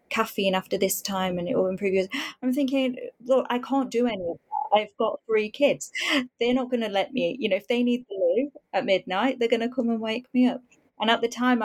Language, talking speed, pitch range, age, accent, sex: English, 250 wpm, 185-250 Hz, 30-49, British, female